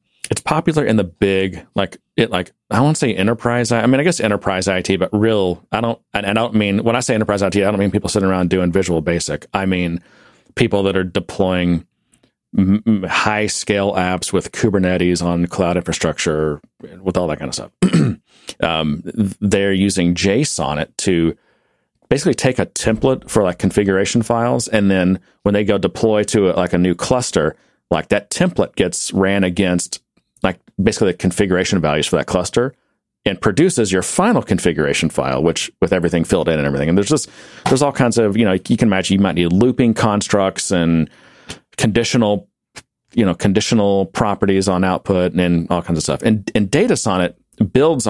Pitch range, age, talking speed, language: 90-105 Hz, 40-59, 185 wpm, English